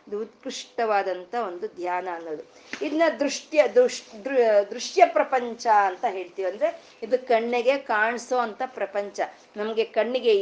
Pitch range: 200-260 Hz